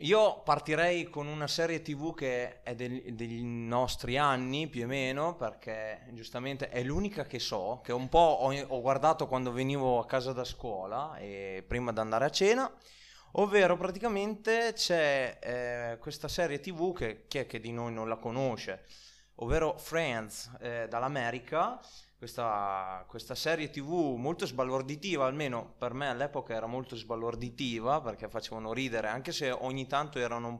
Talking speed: 155 wpm